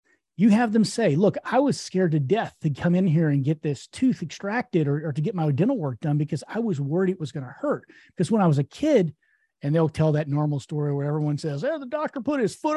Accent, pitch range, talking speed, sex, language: American, 140-190 Hz, 275 wpm, male, English